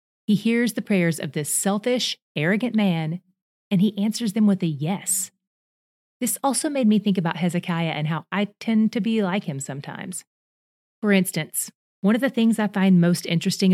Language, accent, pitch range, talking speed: English, American, 170-205 Hz, 185 wpm